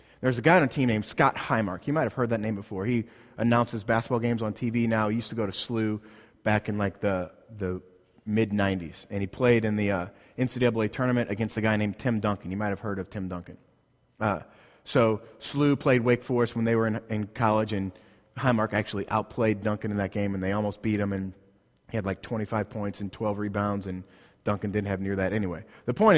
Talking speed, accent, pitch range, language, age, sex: 225 wpm, American, 105-125 Hz, English, 30-49, male